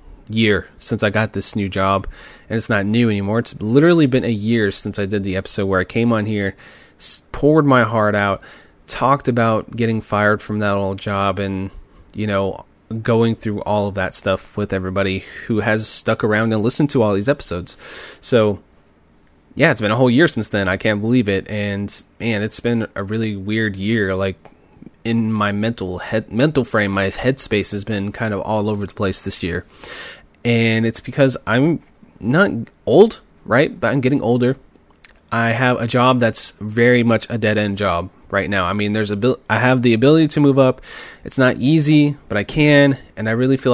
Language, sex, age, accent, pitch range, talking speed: English, male, 30-49, American, 100-120 Hz, 200 wpm